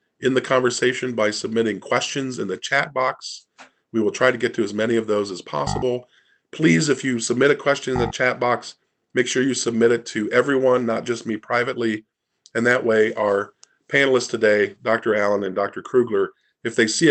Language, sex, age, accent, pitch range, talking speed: English, male, 40-59, American, 110-140 Hz, 200 wpm